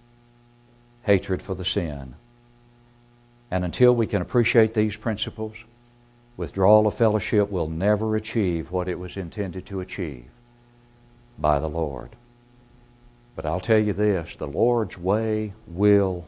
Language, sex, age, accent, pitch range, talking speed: English, male, 60-79, American, 100-120 Hz, 130 wpm